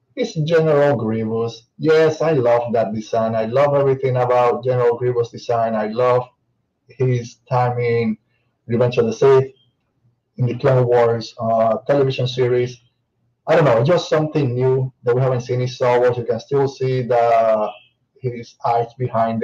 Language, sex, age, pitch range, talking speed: English, male, 20-39, 120-135 Hz, 155 wpm